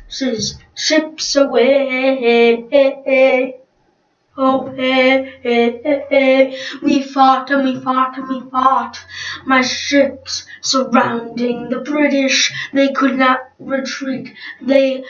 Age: 20-39